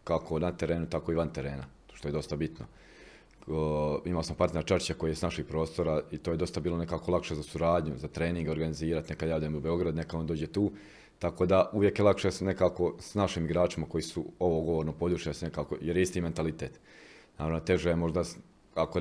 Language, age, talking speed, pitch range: Croatian, 30-49, 205 wpm, 80-90 Hz